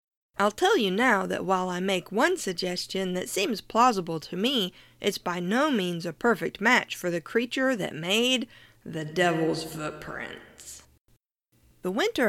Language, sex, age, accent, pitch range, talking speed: English, female, 50-69, American, 175-235 Hz, 155 wpm